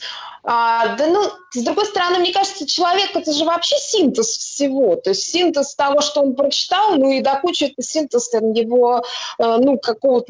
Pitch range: 235-300 Hz